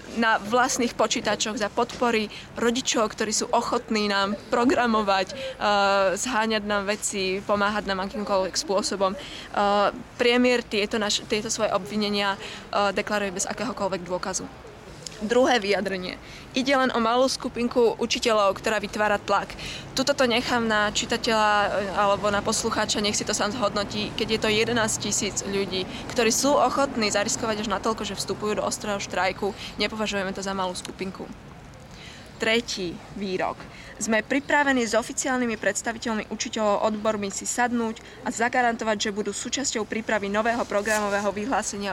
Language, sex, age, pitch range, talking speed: Slovak, female, 20-39, 200-225 Hz, 135 wpm